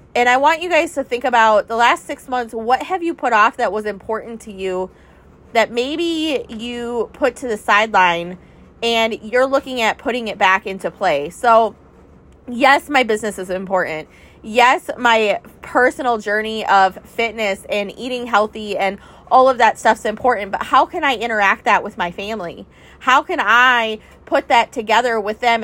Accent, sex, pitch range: American, female, 215-255 Hz